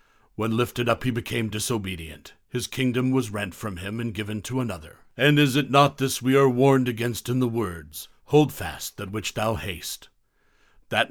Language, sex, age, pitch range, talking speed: English, male, 60-79, 110-130 Hz, 190 wpm